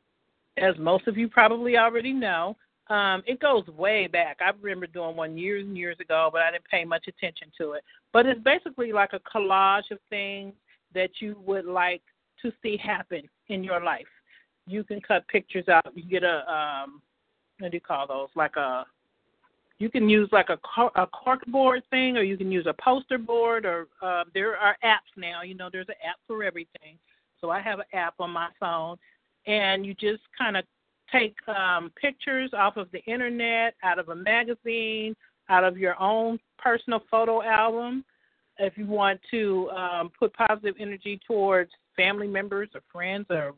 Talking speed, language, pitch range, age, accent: 185 wpm, English, 175-225 Hz, 50-69, American